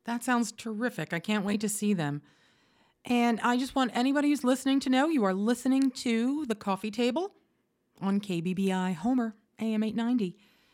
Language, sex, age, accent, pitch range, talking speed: English, female, 40-59, American, 180-240 Hz, 170 wpm